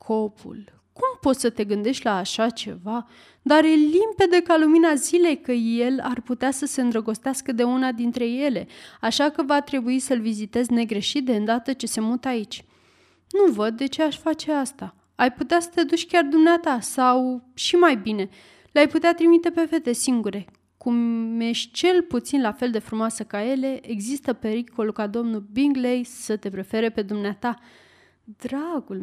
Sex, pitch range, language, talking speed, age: female, 225-285 Hz, Romanian, 175 wpm, 20-39